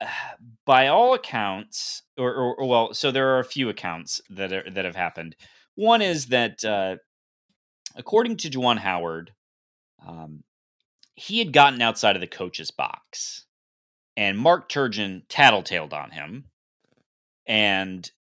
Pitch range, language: 95-130 Hz, English